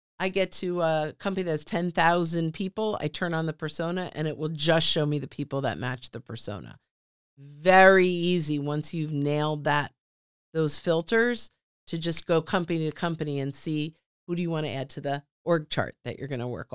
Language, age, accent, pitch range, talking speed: English, 50-69, American, 155-210 Hz, 205 wpm